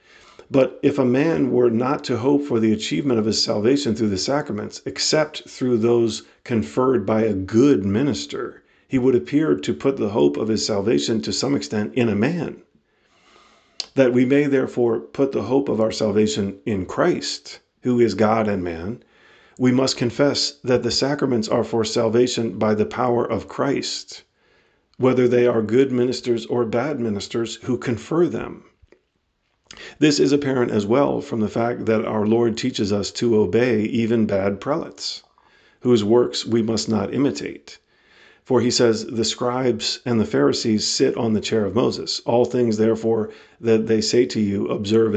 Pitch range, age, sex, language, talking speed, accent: 110-125 Hz, 50-69, male, English, 175 wpm, American